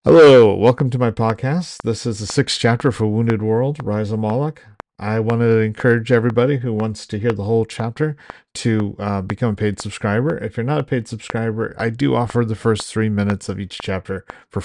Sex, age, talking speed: male, 40-59, 205 wpm